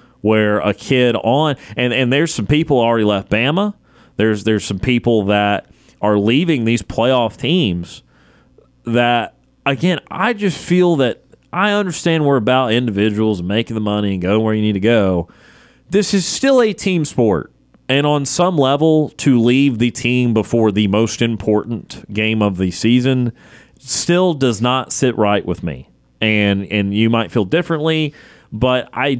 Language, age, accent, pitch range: English, 30-49, American, 105-150 Hz